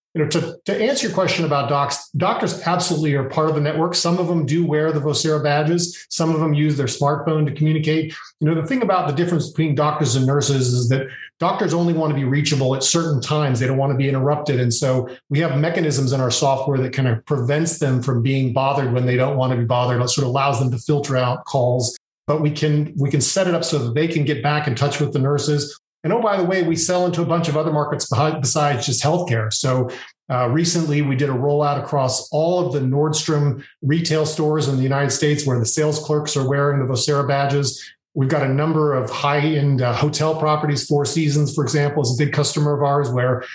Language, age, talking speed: English, 40-59, 240 wpm